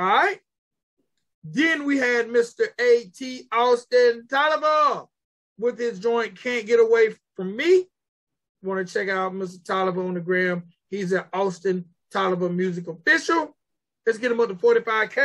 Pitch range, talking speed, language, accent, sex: 180-230 Hz, 150 wpm, English, American, male